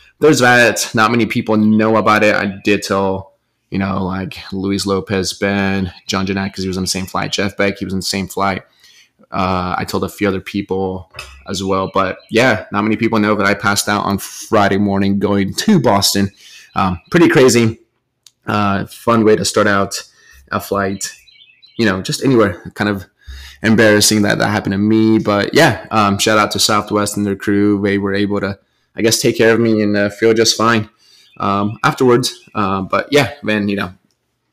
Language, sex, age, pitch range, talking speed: English, male, 20-39, 100-110 Hz, 200 wpm